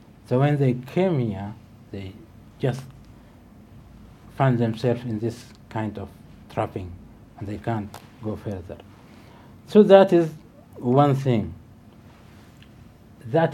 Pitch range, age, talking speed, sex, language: 105-130 Hz, 60-79, 110 wpm, male, English